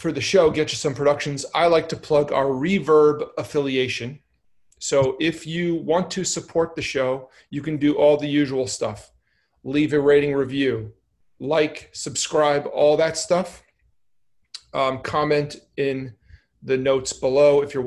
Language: English